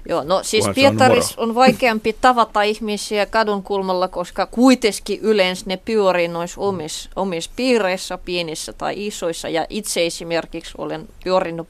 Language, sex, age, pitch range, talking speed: Finnish, female, 20-39, 170-215 Hz, 130 wpm